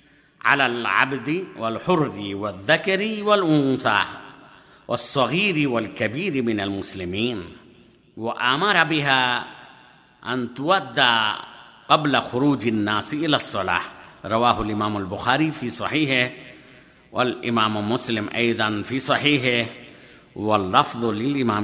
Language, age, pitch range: Bengali, 50-69, 120-170 Hz